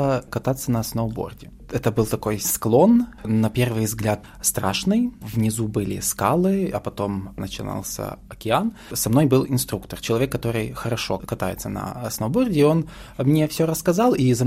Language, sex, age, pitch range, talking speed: Russian, male, 20-39, 110-135 Hz, 140 wpm